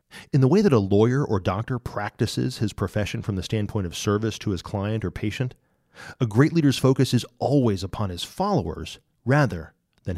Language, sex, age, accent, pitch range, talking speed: English, male, 40-59, American, 95-130 Hz, 190 wpm